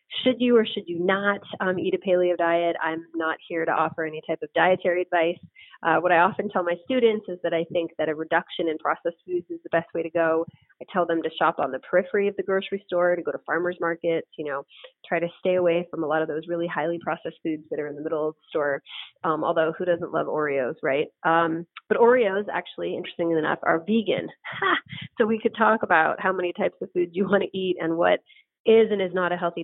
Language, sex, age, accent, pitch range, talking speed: English, female, 30-49, American, 165-185 Hz, 245 wpm